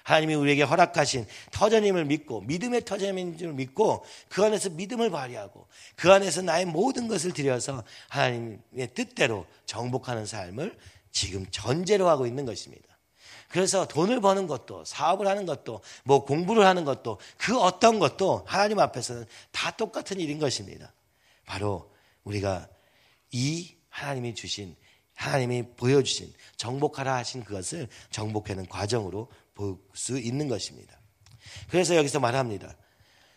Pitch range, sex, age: 105-180 Hz, male, 40-59